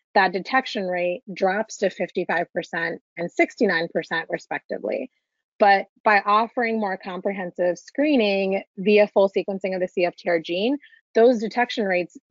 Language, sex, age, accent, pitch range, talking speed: English, female, 30-49, American, 180-220 Hz, 120 wpm